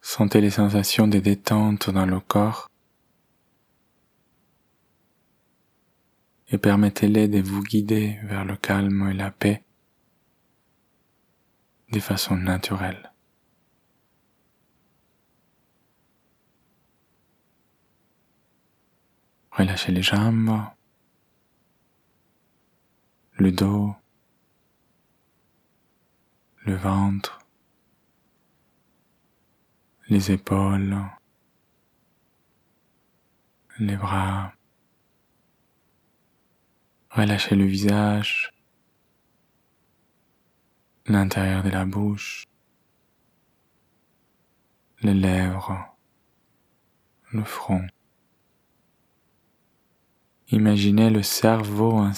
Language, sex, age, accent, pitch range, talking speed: French, male, 20-39, French, 95-105 Hz, 55 wpm